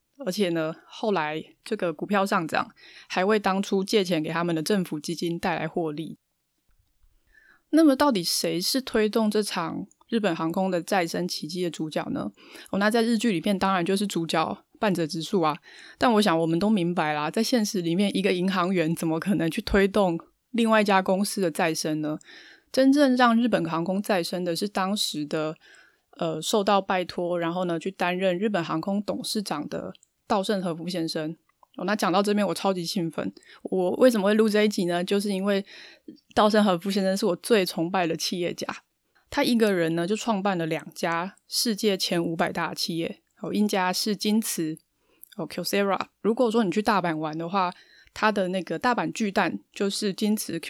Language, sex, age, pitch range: Chinese, female, 20-39, 170-215 Hz